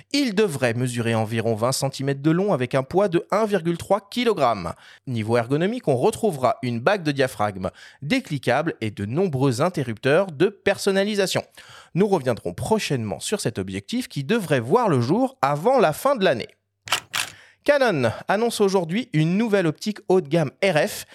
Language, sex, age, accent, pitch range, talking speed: French, male, 30-49, French, 125-200 Hz, 155 wpm